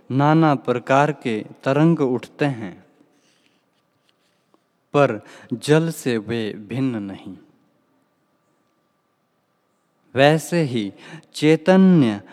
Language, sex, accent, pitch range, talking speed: Hindi, male, native, 110-155 Hz, 75 wpm